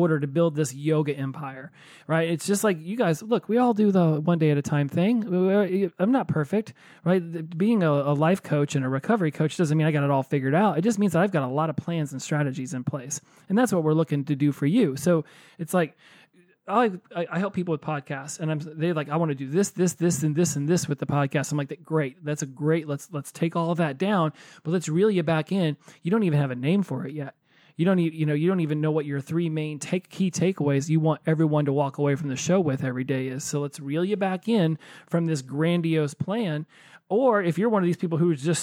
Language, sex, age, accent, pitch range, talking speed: English, male, 30-49, American, 150-180 Hz, 265 wpm